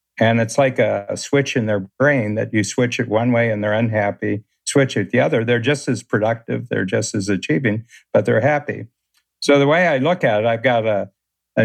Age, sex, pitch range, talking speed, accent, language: 60-79, male, 105-125 Hz, 220 wpm, American, English